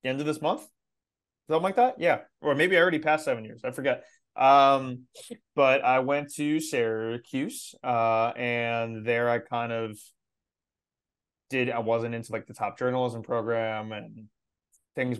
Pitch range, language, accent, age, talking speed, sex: 115-135 Hz, English, American, 20-39, 160 wpm, male